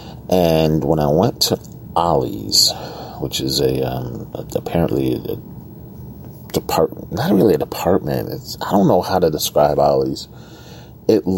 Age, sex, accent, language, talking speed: 40-59, male, American, English, 135 wpm